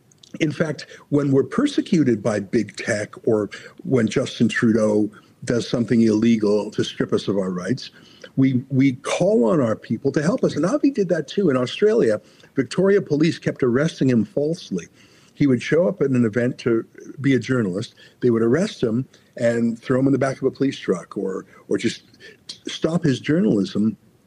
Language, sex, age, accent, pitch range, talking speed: English, male, 60-79, American, 125-180 Hz, 185 wpm